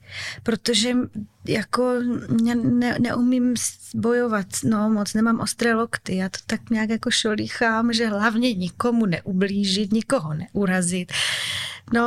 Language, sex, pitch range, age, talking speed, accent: Czech, female, 205-240 Hz, 20-39, 125 wpm, native